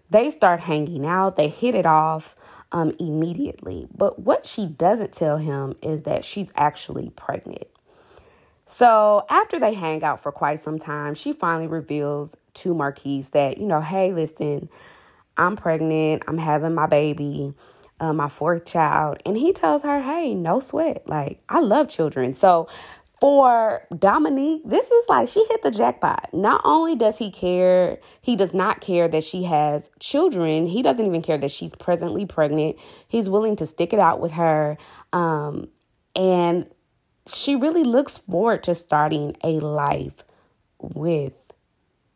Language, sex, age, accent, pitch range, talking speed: English, female, 20-39, American, 150-215 Hz, 160 wpm